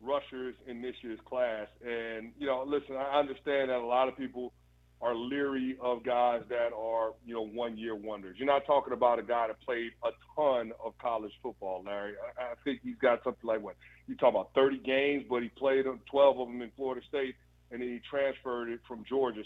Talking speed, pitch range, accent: 215 wpm, 120-145 Hz, American